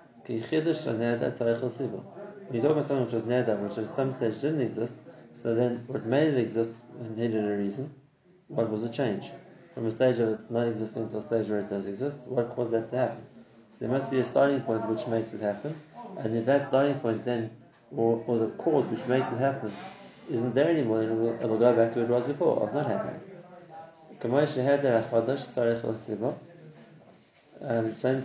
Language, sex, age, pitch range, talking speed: English, male, 30-49, 115-140 Hz, 190 wpm